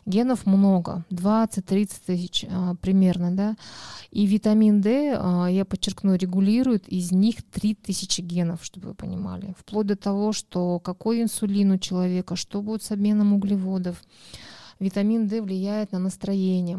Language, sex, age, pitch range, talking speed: Russian, female, 20-39, 180-200 Hz, 140 wpm